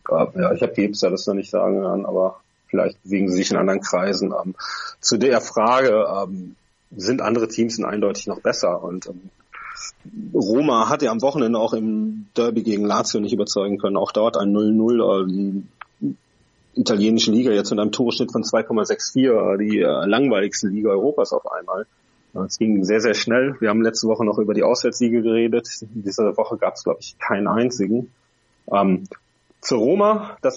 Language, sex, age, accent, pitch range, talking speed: German, male, 30-49, German, 110-140 Hz, 170 wpm